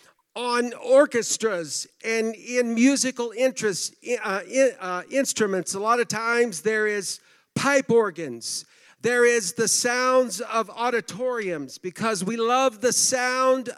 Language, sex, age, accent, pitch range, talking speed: English, male, 50-69, American, 210-245 Hz, 120 wpm